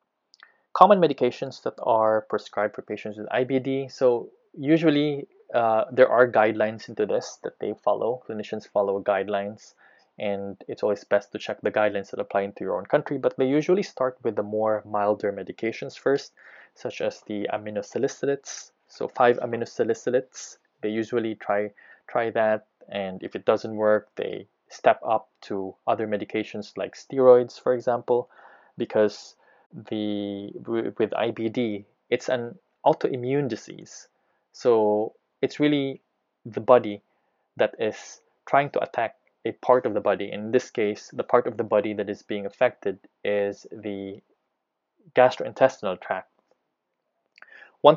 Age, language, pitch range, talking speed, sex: 20-39, English, 105-130 Hz, 145 wpm, male